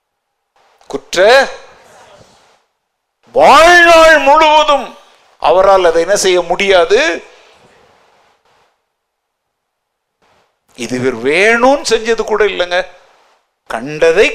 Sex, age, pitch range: male, 60-79, 215-335 Hz